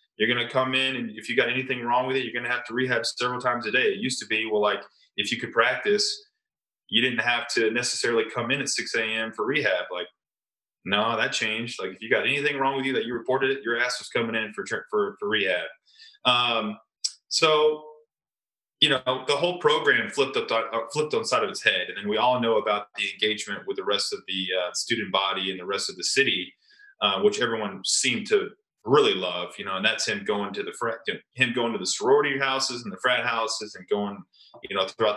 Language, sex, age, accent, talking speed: English, male, 20-39, American, 235 wpm